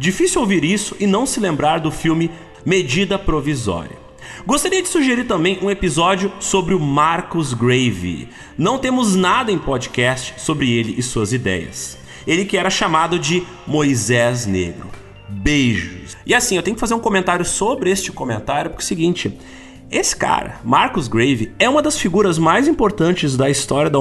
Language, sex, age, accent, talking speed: Portuguese, male, 30-49, Brazilian, 165 wpm